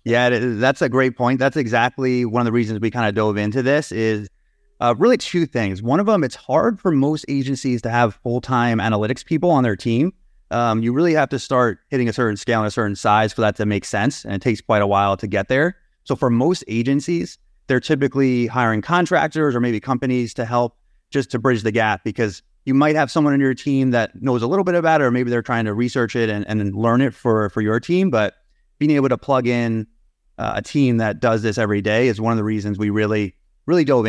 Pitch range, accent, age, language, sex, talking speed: 110-135 Hz, American, 30-49, English, male, 240 wpm